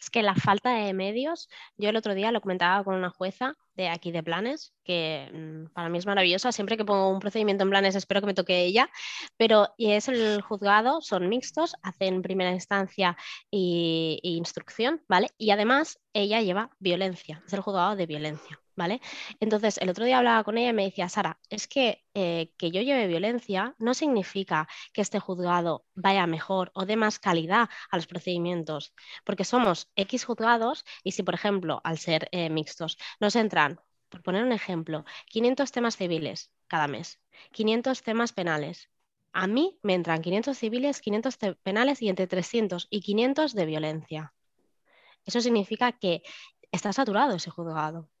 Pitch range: 175-230 Hz